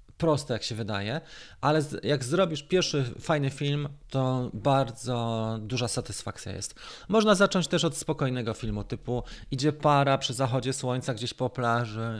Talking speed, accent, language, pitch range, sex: 150 wpm, native, Polish, 110-140 Hz, male